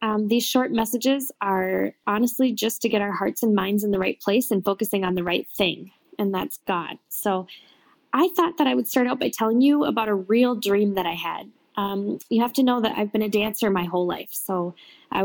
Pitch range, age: 200-260 Hz, 10-29